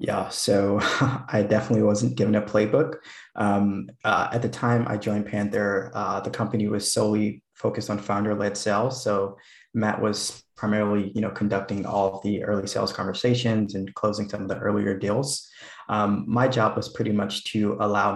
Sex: male